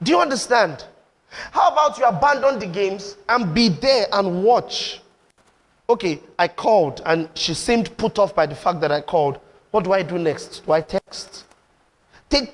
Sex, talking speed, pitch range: male, 175 wpm, 180-245 Hz